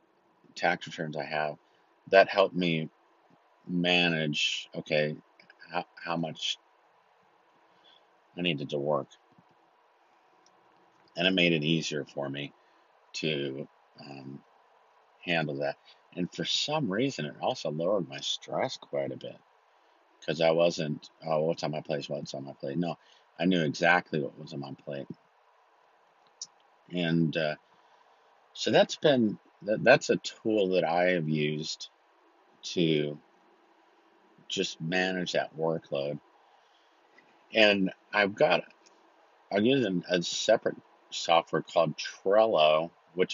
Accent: American